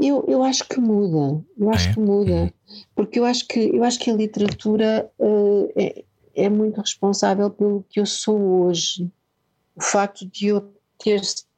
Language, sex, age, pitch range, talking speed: Portuguese, female, 50-69, 165-220 Hz, 170 wpm